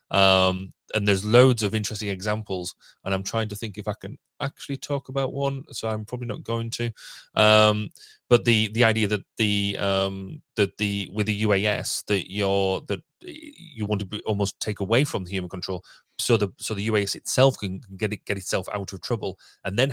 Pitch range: 100-115 Hz